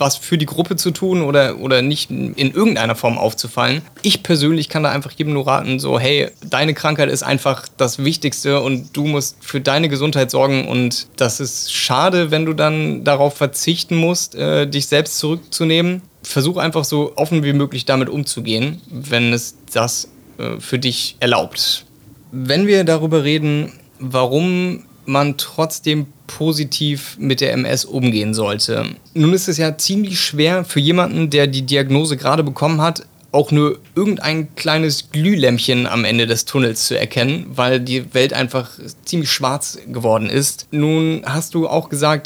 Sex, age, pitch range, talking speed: male, 30-49, 130-155 Hz, 165 wpm